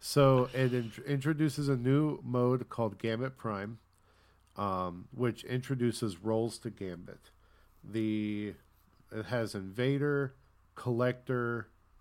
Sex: male